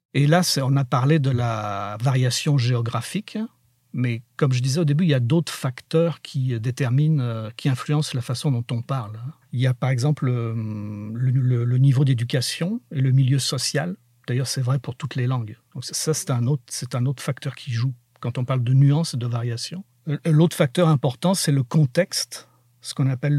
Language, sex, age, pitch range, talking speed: French, male, 50-69, 125-150 Hz, 200 wpm